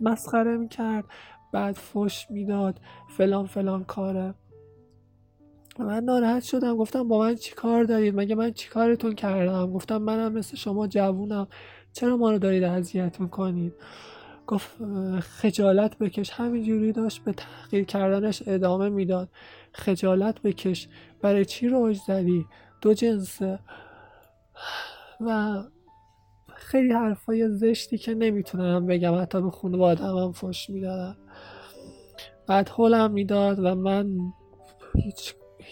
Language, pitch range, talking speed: English, 185-220 Hz, 120 wpm